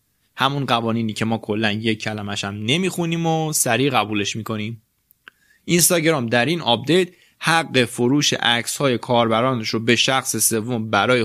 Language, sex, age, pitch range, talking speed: Persian, male, 20-39, 110-145 Hz, 145 wpm